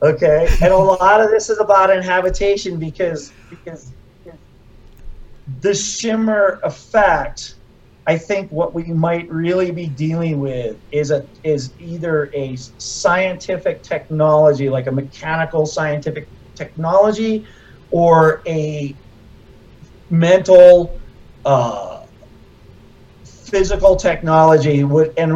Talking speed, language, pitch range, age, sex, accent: 100 wpm, English, 135-165 Hz, 40-59, male, American